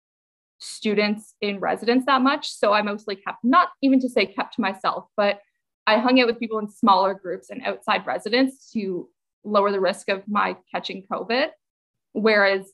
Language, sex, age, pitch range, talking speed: English, female, 20-39, 200-255 Hz, 175 wpm